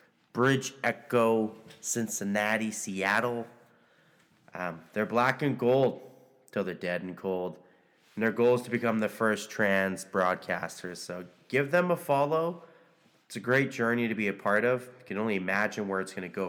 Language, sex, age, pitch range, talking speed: English, male, 20-39, 100-135 Hz, 170 wpm